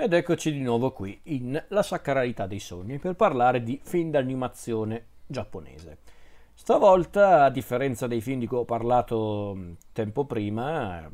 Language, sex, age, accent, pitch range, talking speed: Italian, male, 40-59, native, 115-135 Hz, 145 wpm